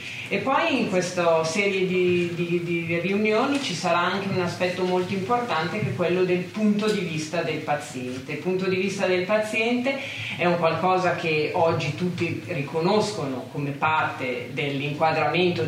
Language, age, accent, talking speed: Italian, 40-59, native, 160 wpm